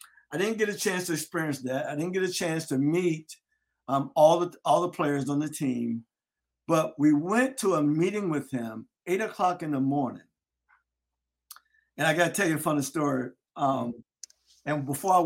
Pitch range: 135-180 Hz